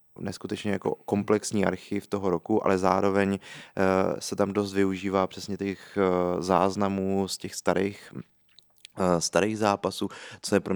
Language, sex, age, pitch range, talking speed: Czech, male, 20-39, 95-100 Hz, 130 wpm